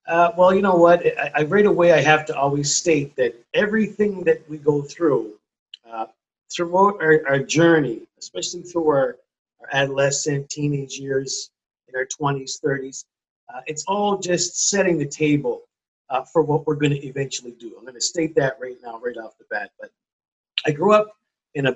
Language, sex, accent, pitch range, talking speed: English, male, American, 140-175 Hz, 190 wpm